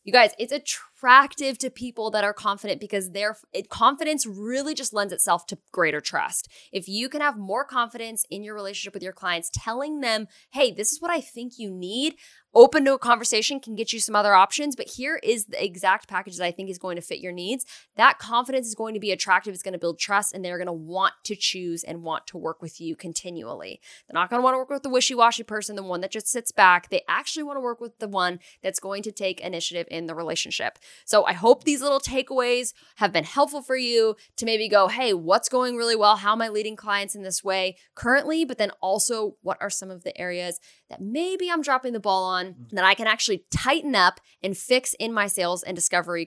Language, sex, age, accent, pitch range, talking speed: English, female, 10-29, American, 185-255 Hz, 230 wpm